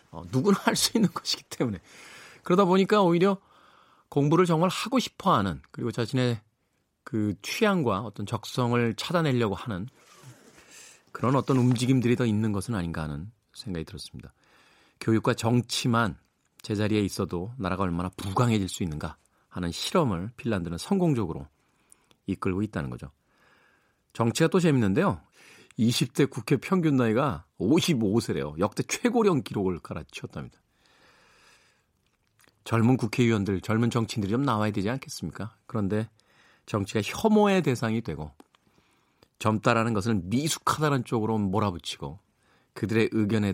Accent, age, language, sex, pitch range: native, 40-59, Korean, male, 95-130 Hz